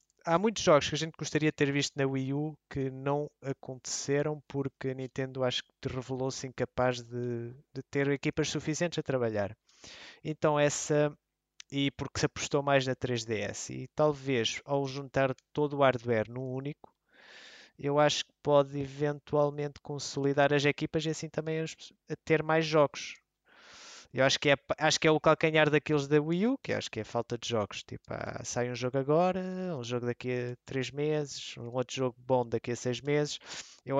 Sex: male